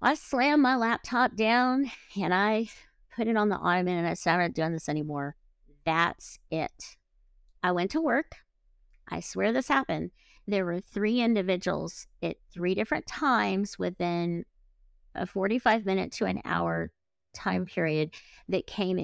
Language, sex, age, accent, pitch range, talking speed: English, female, 50-69, American, 160-205 Hz, 150 wpm